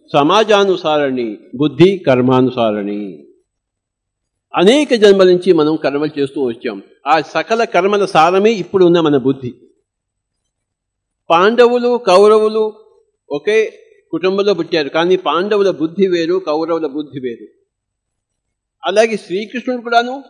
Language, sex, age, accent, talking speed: English, male, 50-69, Indian, 105 wpm